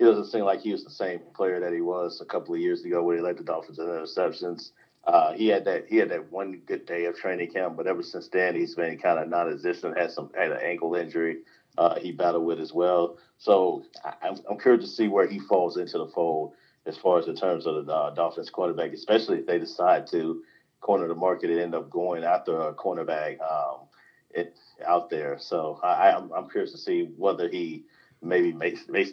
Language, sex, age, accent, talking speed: English, male, 40-59, American, 235 wpm